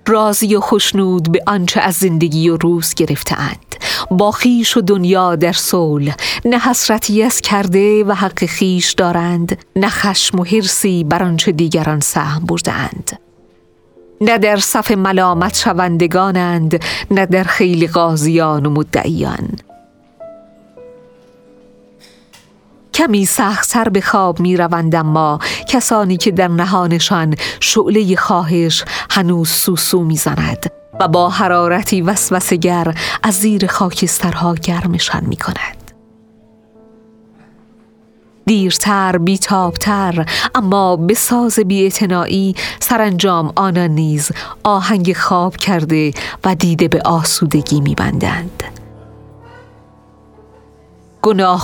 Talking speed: 100 wpm